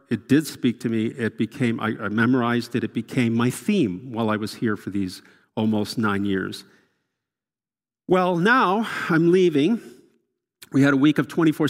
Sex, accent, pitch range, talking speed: male, American, 120-155 Hz, 170 wpm